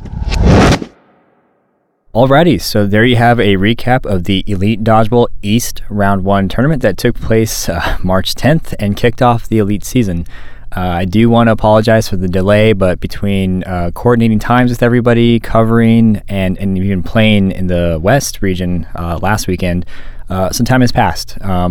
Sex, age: male, 20-39